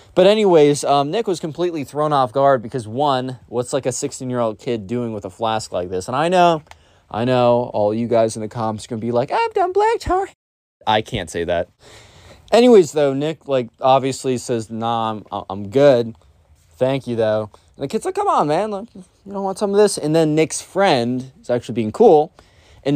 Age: 20-39